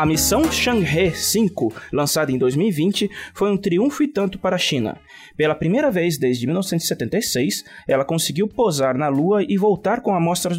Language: Portuguese